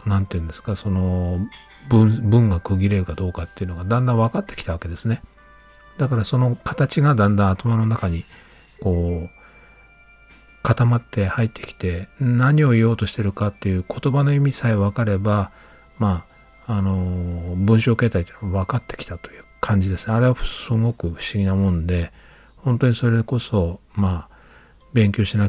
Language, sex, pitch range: Japanese, male, 95-115 Hz